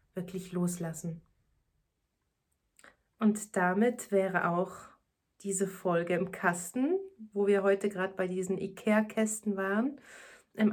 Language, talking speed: German, 105 wpm